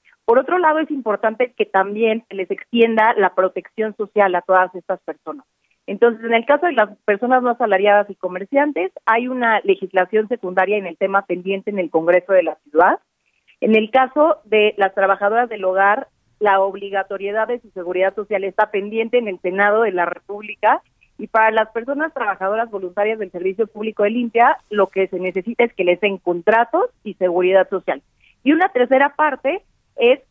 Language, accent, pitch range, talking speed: Spanish, Mexican, 185-230 Hz, 180 wpm